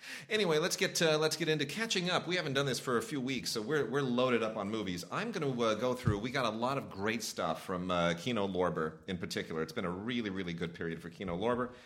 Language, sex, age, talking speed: English, male, 30-49, 270 wpm